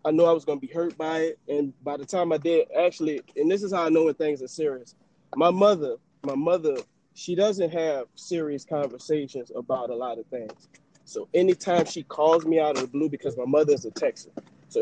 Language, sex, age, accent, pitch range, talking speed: English, male, 20-39, American, 140-170 Hz, 230 wpm